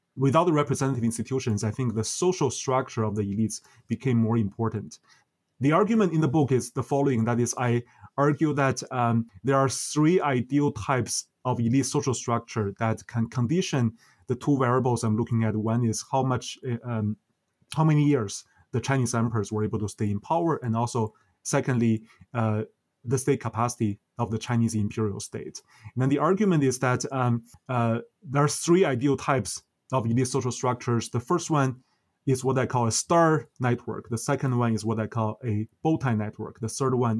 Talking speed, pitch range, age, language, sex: 185 wpm, 115-135 Hz, 30-49, English, male